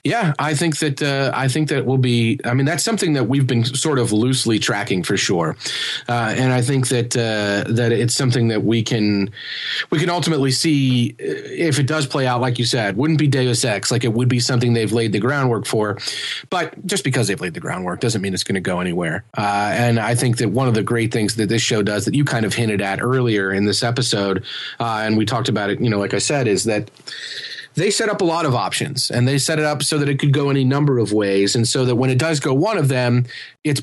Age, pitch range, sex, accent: 30-49, 115-140 Hz, male, American